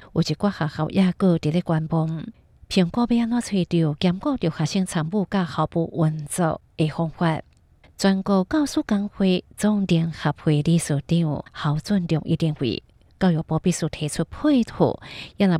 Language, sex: Chinese, female